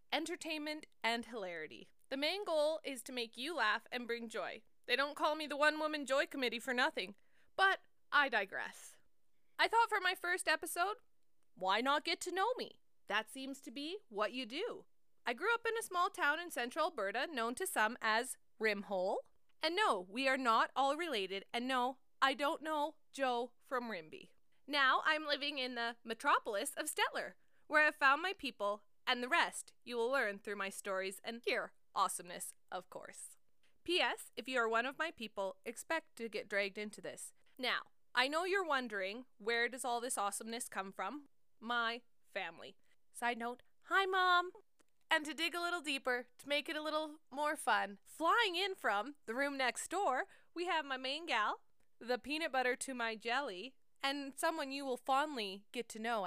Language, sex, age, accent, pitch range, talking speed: English, female, 20-39, American, 235-315 Hz, 185 wpm